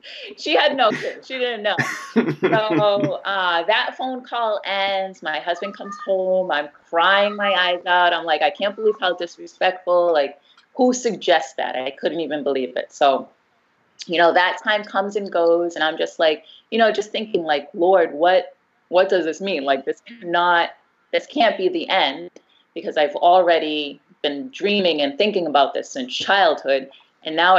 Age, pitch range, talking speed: 30-49, 155-200 Hz, 180 wpm